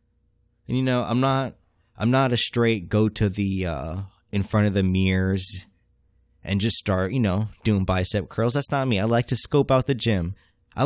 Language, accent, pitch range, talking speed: English, American, 95-130 Hz, 205 wpm